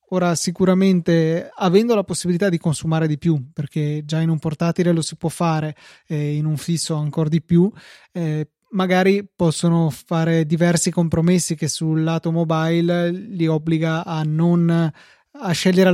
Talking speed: 160 wpm